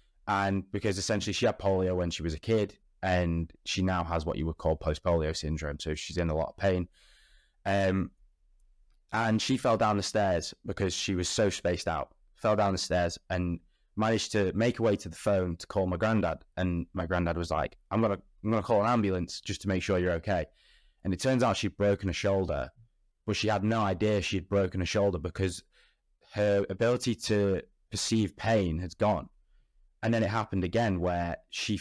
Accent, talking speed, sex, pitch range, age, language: British, 205 wpm, male, 90-110 Hz, 10-29, English